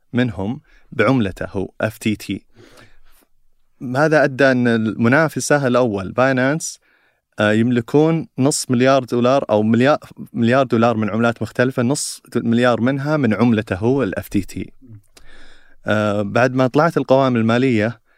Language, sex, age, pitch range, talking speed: Arabic, male, 30-49, 110-130 Hz, 120 wpm